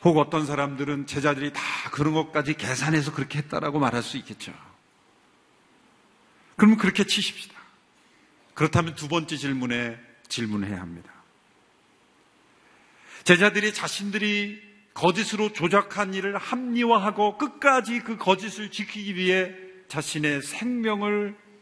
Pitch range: 145-200 Hz